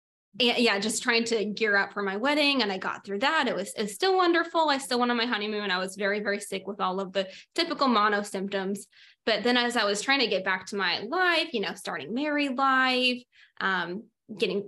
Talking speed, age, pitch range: 230 wpm, 20-39, 200-250 Hz